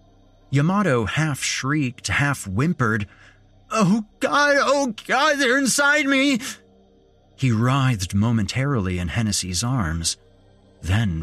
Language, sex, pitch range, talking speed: English, male, 80-120 Hz, 95 wpm